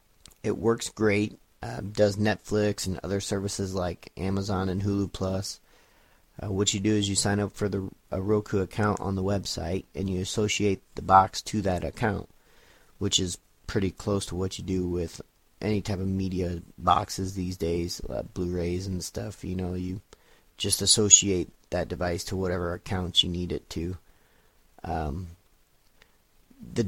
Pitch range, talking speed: 90-105 Hz, 165 wpm